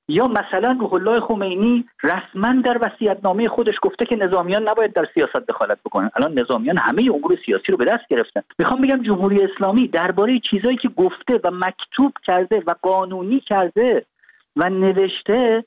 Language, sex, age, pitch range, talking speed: Persian, male, 50-69, 180-255 Hz, 160 wpm